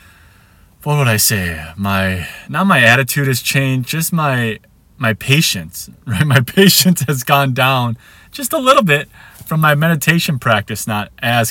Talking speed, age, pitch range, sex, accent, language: 155 wpm, 20-39, 100-135 Hz, male, American, English